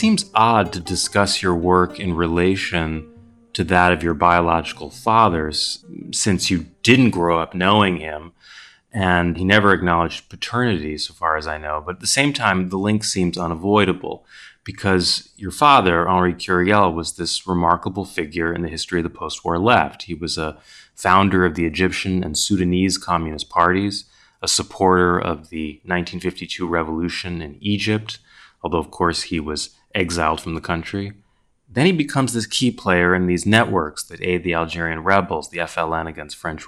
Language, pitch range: English, 85-100 Hz